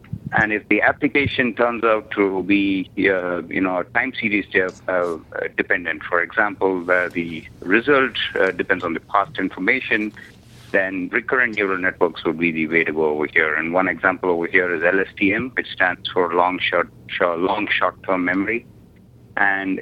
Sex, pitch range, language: male, 95-110 Hz, English